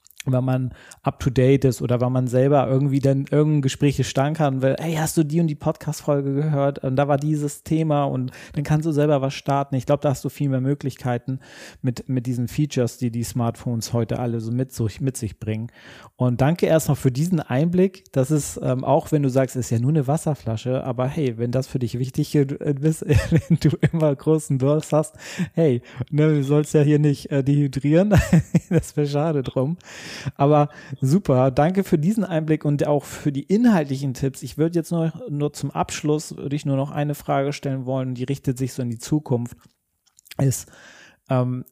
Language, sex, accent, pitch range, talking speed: German, male, German, 125-150 Hz, 205 wpm